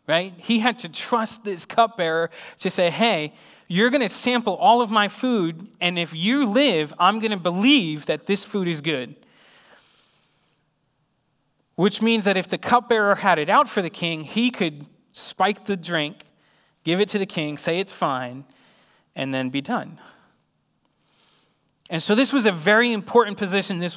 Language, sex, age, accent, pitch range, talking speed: English, male, 30-49, American, 155-205 Hz, 175 wpm